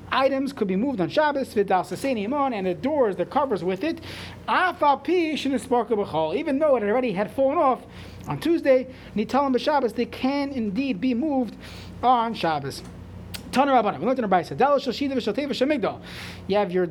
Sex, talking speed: male, 115 wpm